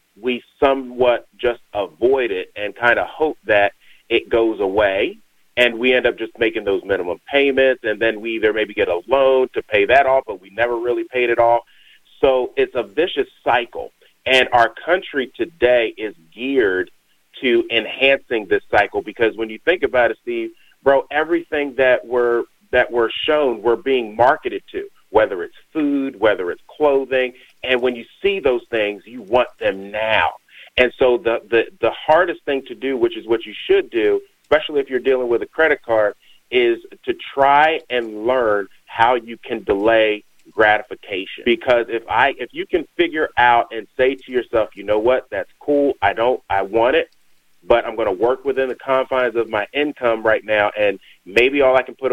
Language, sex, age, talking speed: English, male, 30-49, 185 wpm